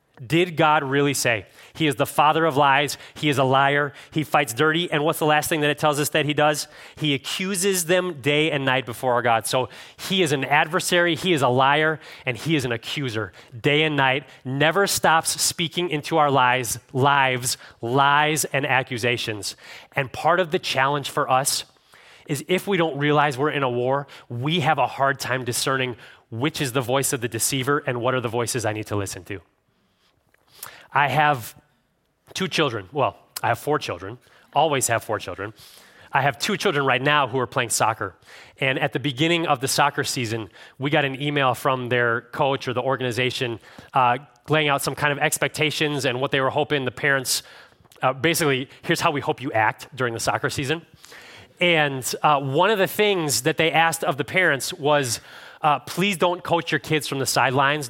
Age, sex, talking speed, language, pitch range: 30-49, male, 200 wpm, English, 130-155 Hz